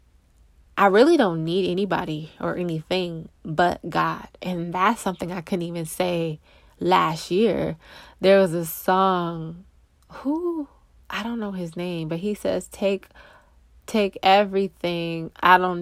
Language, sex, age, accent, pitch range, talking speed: English, female, 20-39, American, 170-225 Hz, 135 wpm